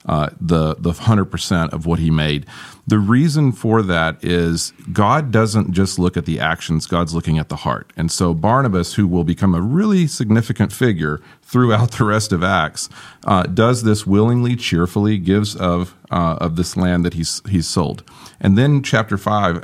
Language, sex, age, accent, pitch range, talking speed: English, male, 40-59, American, 85-105 Hz, 180 wpm